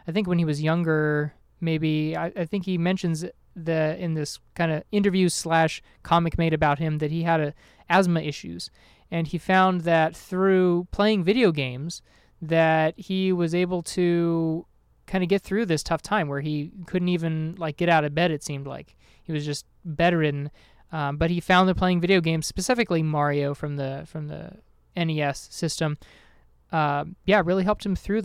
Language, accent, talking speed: English, American, 180 wpm